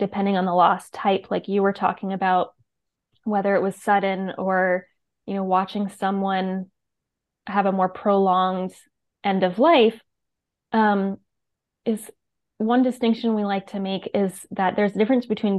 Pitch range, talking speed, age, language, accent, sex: 185-215 Hz, 155 wpm, 20-39, English, American, female